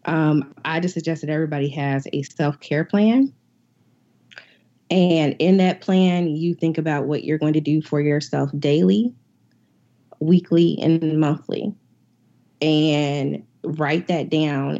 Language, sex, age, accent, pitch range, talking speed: English, female, 20-39, American, 145-170 Hz, 130 wpm